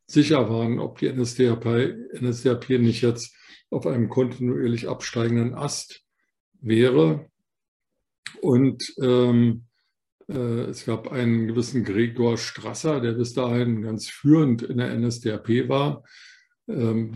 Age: 50-69